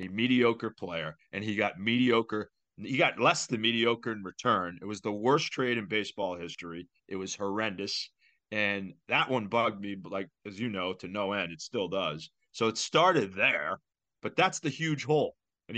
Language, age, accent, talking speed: English, 30-49, American, 195 wpm